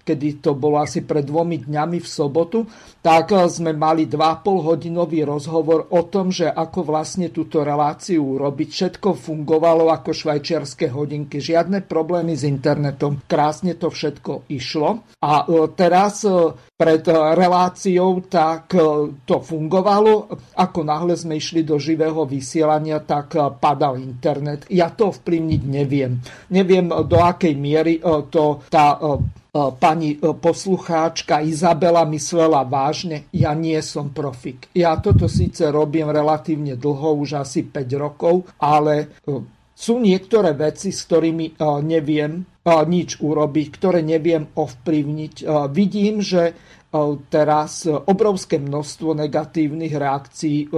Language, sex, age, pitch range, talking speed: Slovak, male, 50-69, 150-170 Hz, 120 wpm